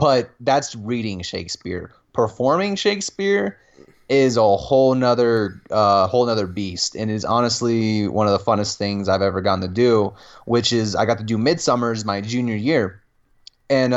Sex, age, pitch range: male, 20-39, 100-125 Hz